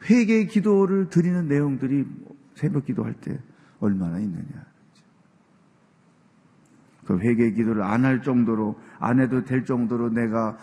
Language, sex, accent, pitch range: Korean, male, native, 115-170 Hz